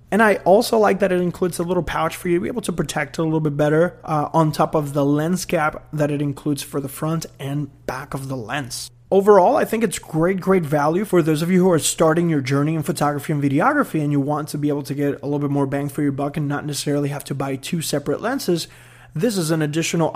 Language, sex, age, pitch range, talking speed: English, male, 20-39, 145-190 Hz, 260 wpm